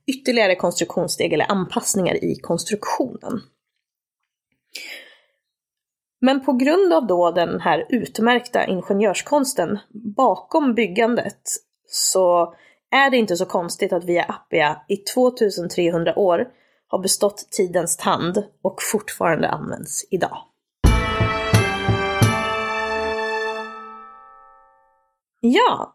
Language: Swedish